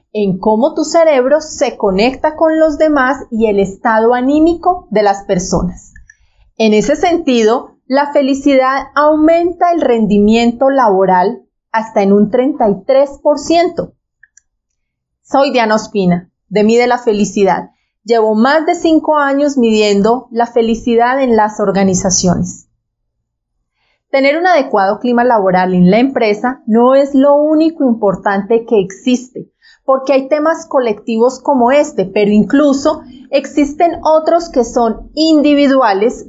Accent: Colombian